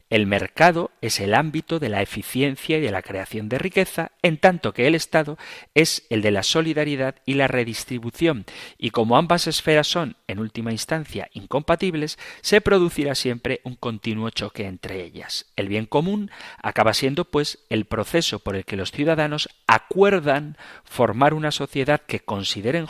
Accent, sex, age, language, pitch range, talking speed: Spanish, male, 40-59, Spanish, 105-145 Hz, 165 wpm